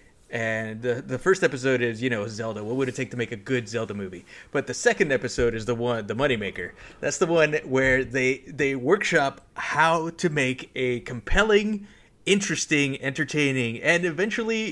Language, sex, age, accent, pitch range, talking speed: English, male, 30-49, American, 120-190 Hz, 180 wpm